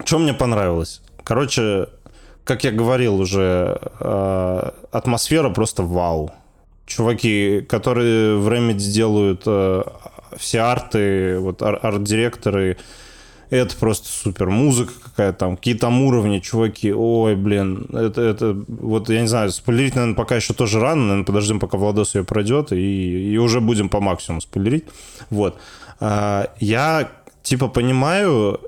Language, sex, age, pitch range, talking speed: Russian, male, 20-39, 100-120 Hz, 125 wpm